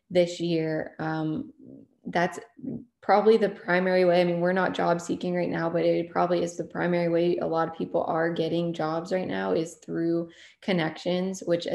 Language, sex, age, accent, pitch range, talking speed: English, female, 20-39, American, 165-180 Hz, 185 wpm